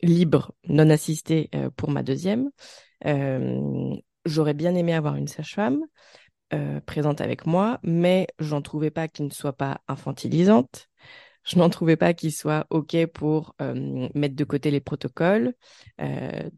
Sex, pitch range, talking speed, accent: female, 140-170 Hz, 155 wpm, French